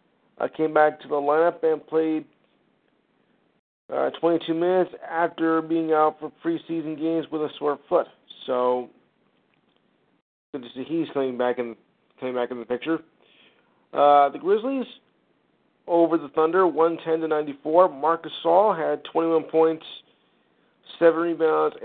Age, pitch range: 50-69, 145-165 Hz